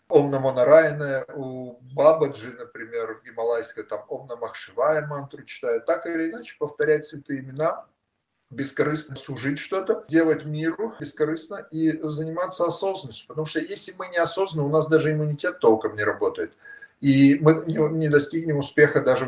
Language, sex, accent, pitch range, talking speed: Russian, male, native, 140-165 Hz, 145 wpm